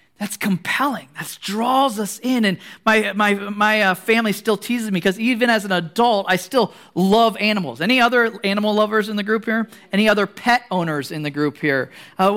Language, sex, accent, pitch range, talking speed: English, male, American, 195-240 Hz, 200 wpm